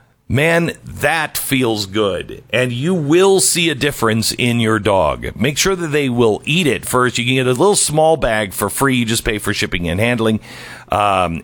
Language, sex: English, male